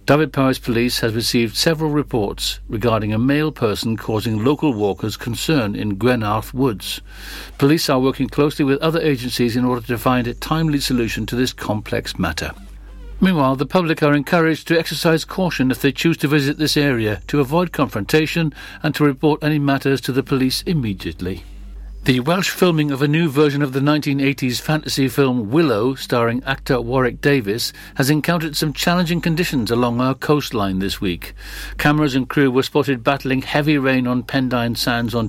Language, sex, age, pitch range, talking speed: English, male, 60-79, 115-145 Hz, 175 wpm